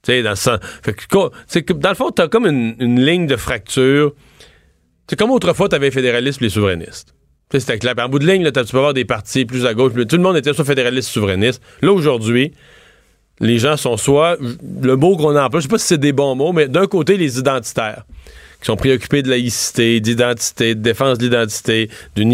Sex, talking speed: male, 230 wpm